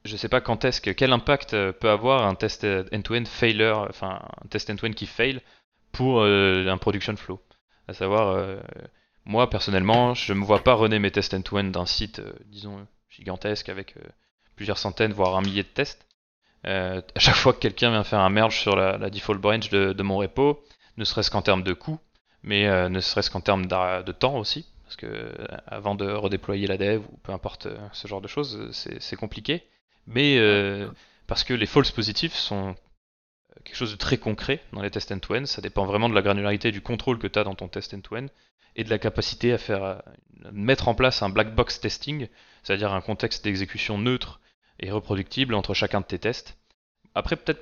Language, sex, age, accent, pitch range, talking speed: French, male, 20-39, French, 100-120 Hz, 210 wpm